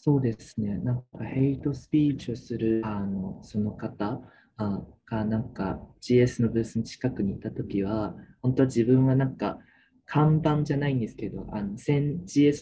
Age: 20-39